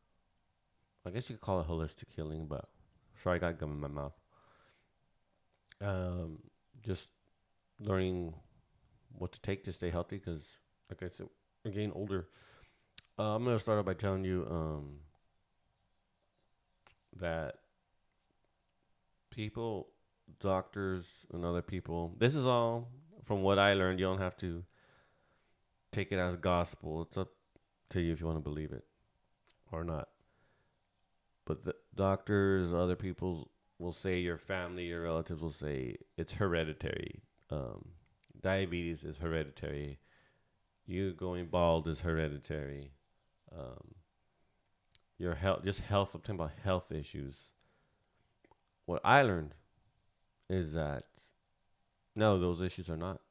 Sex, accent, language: male, American, English